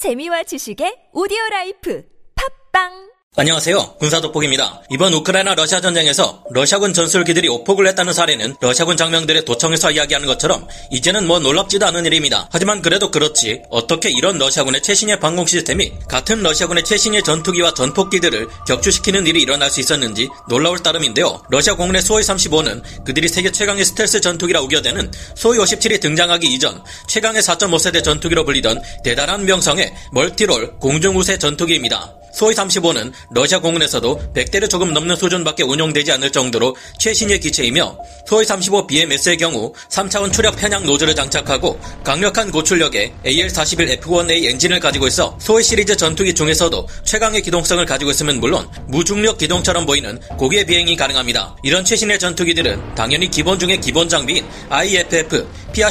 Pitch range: 145-195 Hz